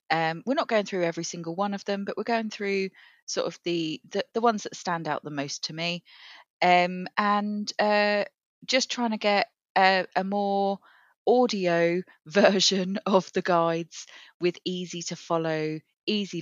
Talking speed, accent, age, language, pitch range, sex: 170 wpm, British, 30-49, English, 165-215 Hz, female